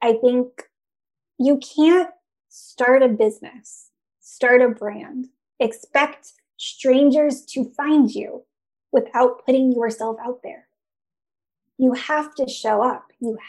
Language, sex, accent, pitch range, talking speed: English, female, American, 225-275 Hz, 115 wpm